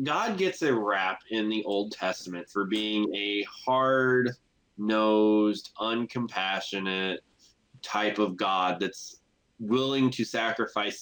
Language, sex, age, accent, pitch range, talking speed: English, male, 20-39, American, 100-120 Hz, 110 wpm